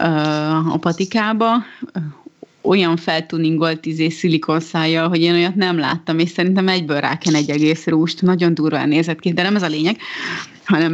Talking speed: 155 wpm